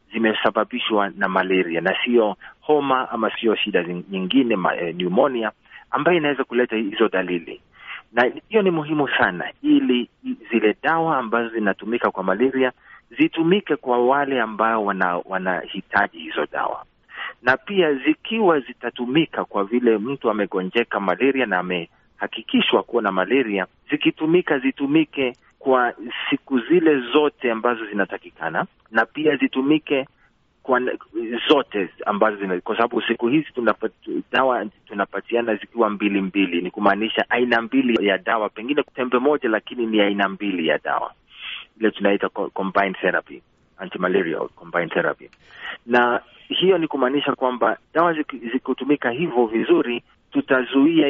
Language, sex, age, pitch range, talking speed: Swahili, male, 40-59, 105-145 Hz, 130 wpm